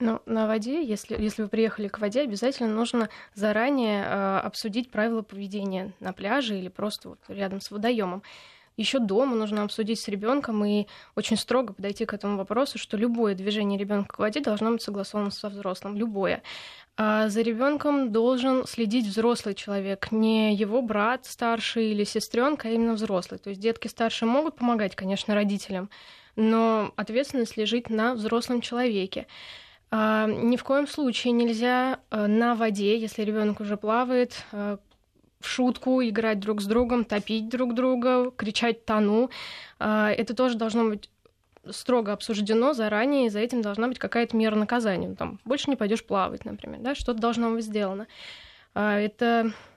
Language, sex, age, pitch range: Russian, female, 20-39, 210-240 Hz